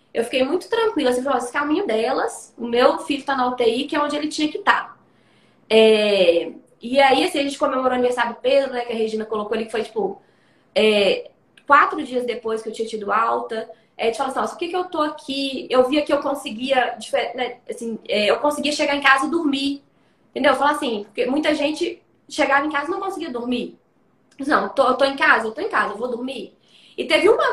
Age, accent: 20-39, Brazilian